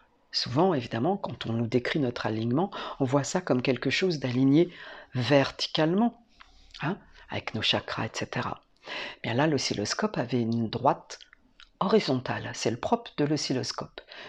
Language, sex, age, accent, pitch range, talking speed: French, female, 50-69, French, 125-155 Hz, 140 wpm